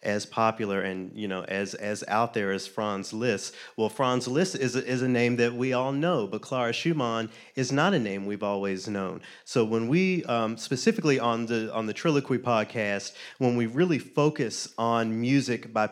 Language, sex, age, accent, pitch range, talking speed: English, male, 30-49, American, 110-130 Hz, 195 wpm